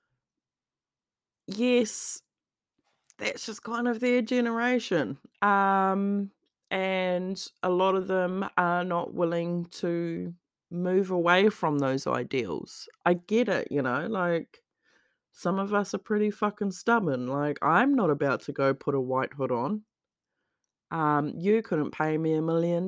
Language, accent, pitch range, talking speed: English, Australian, 130-190 Hz, 140 wpm